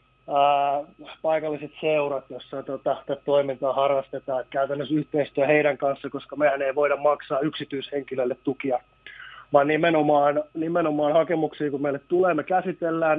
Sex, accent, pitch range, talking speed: male, native, 140-160 Hz, 125 wpm